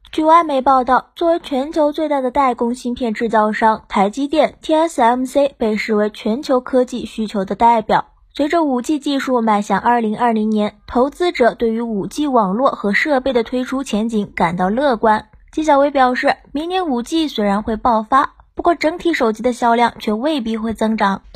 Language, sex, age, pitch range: Chinese, female, 20-39, 225-300 Hz